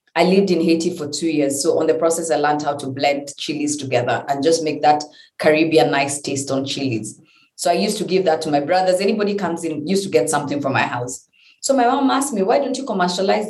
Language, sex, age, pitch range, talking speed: English, female, 30-49, 145-175 Hz, 245 wpm